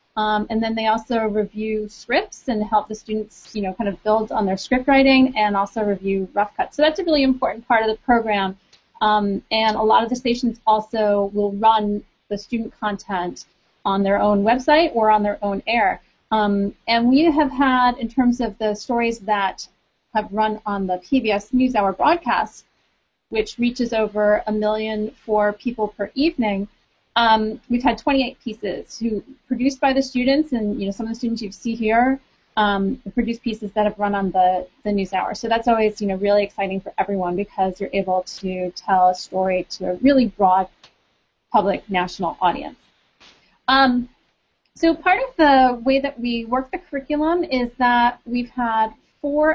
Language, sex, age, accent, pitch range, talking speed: English, female, 30-49, American, 205-250 Hz, 185 wpm